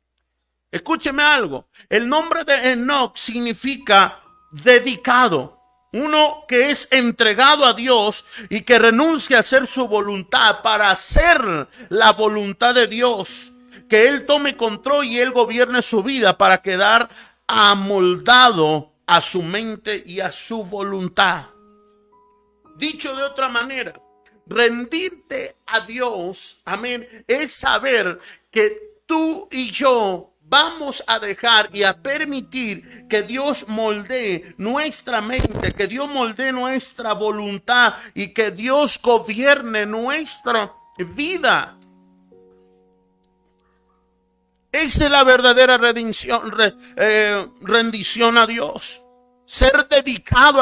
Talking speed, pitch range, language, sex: 110 wpm, 200-265 Hz, Spanish, male